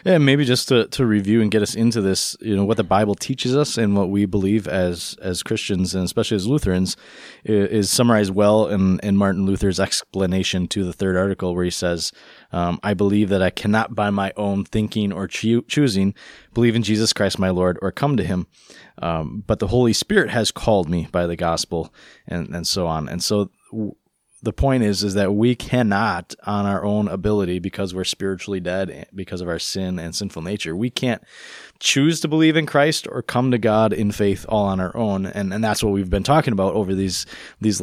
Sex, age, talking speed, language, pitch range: male, 20-39, 215 wpm, English, 95-110 Hz